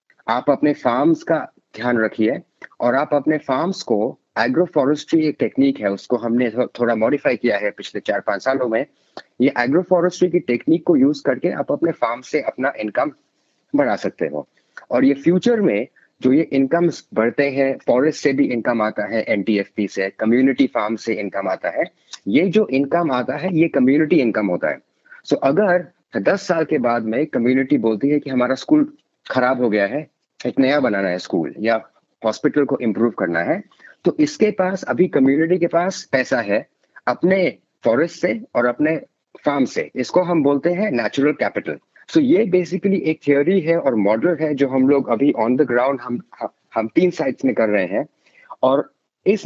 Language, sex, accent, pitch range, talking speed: Hindi, male, native, 120-180 Hz, 185 wpm